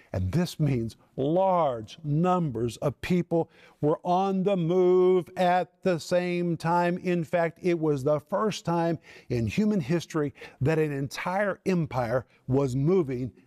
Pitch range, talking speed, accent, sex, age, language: 150-185 Hz, 140 wpm, American, male, 50-69, English